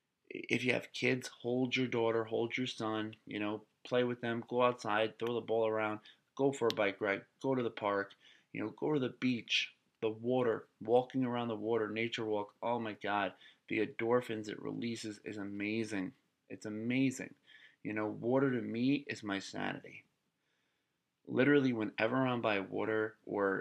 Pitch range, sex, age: 105-125 Hz, male, 30-49